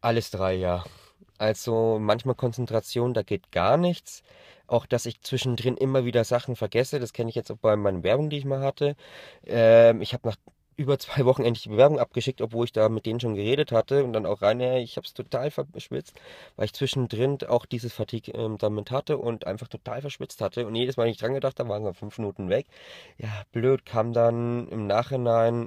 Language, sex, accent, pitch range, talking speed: German, male, German, 110-130 Hz, 210 wpm